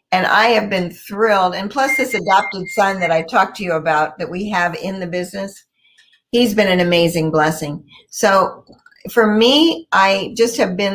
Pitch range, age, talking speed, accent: 170-205 Hz, 50-69, 185 wpm, American